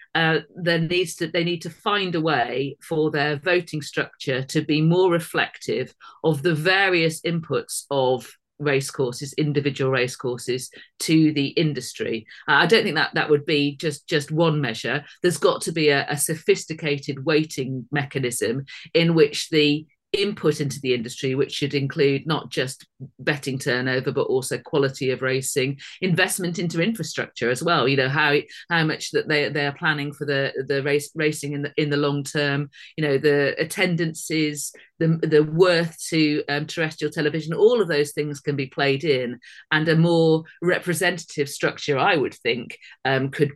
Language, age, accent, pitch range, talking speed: English, 40-59, British, 140-165 Hz, 170 wpm